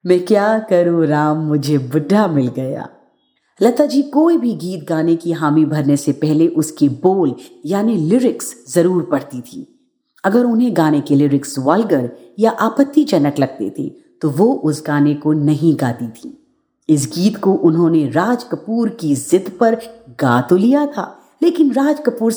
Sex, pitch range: female, 145-225 Hz